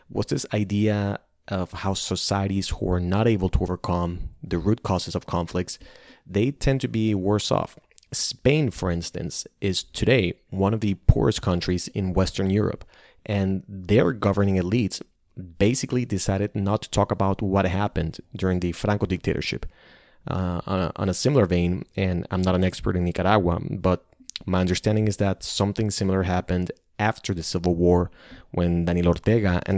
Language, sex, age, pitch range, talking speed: English, male, 30-49, 90-105 Hz, 165 wpm